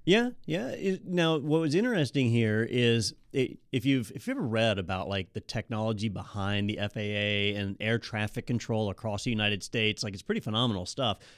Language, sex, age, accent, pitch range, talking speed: English, male, 40-59, American, 110-135 Hz, 185 wpm